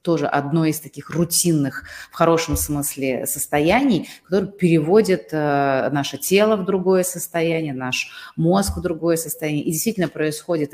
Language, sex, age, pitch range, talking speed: Russian, female, 30-49, 140-165 Hz, 140 wpm